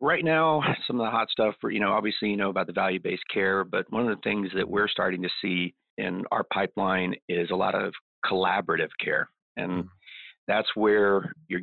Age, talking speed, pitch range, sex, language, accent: 40-59, 205 wpm, 90-105 Hz, male, English, American